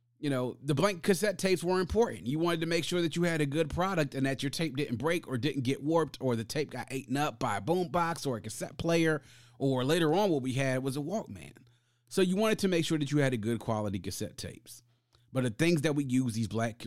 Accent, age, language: American, 30-49, English